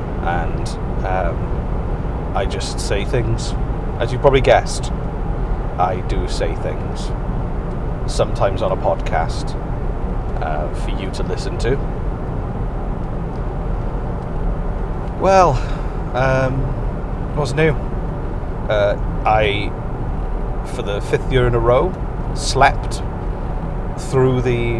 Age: 30-49